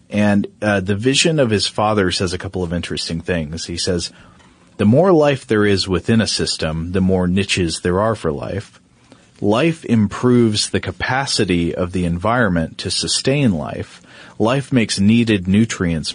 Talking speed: 165 wpm